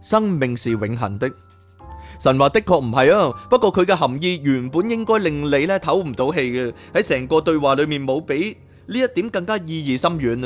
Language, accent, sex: Chinese, native, male